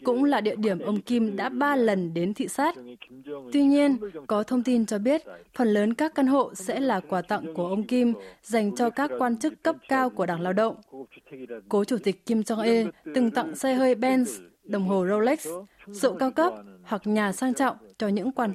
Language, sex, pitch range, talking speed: Vietnamese, female, 195-255 Hz, 210 wpm